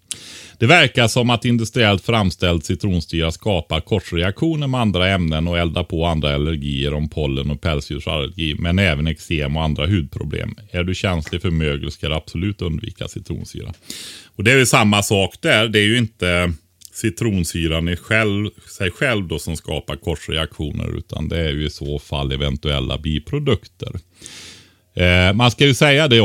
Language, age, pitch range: Swedish, 30-49, 80-110 Hz